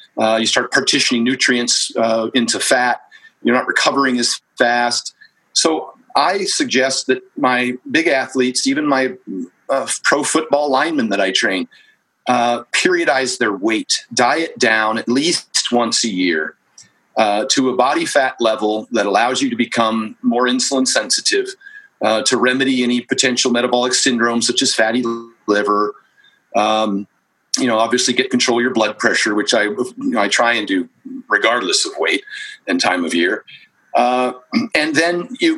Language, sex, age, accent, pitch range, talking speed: English, male, 40-59, American, 120-175 Hz, 155 wpm